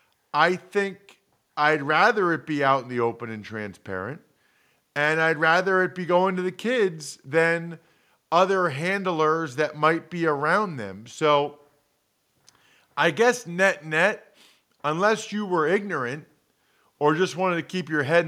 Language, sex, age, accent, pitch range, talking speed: English, male, 40-59, American, 150-190 Hz, 145 wpm